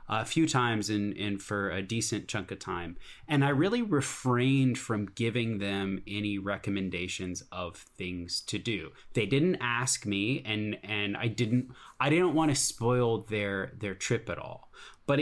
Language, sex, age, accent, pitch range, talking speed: English, male, 20-39, American, 100-135 Hz, 170 wpm